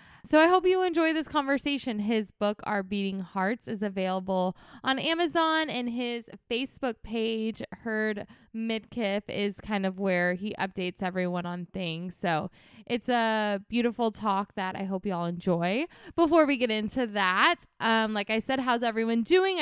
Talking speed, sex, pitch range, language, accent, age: 165 wpm, female, 190-245 Hz, English, American, 20-39